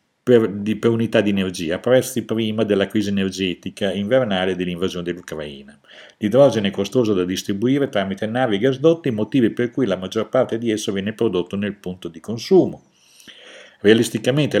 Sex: male